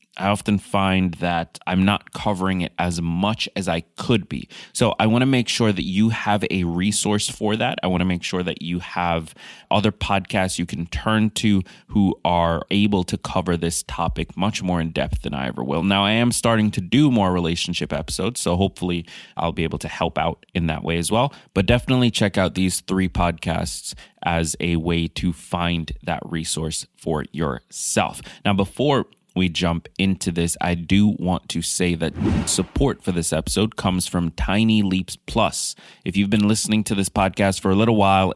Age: 20-39